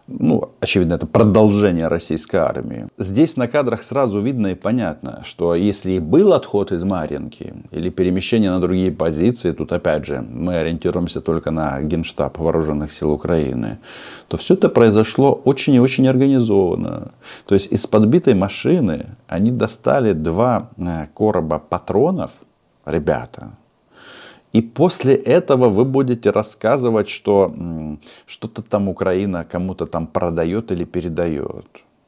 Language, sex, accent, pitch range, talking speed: Russian, male, native, 85-115 Hz, 130 wpm